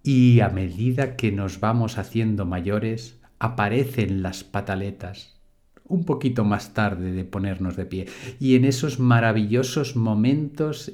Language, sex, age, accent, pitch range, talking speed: Spanish, male, 50-69, Spanish, 105-130 Hz, 130 wpm